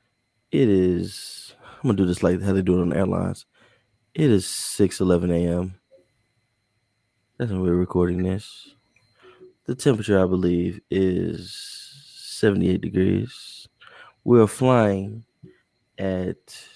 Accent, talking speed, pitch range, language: American, 120 wpm, 95-115 Hz, English